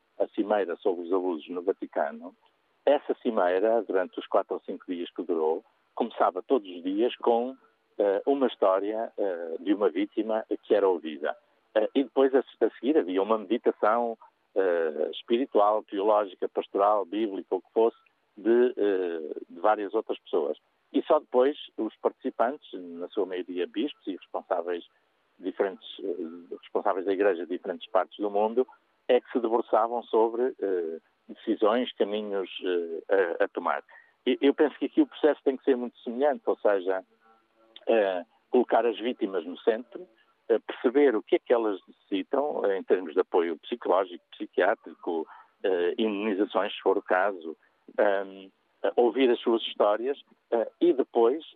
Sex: male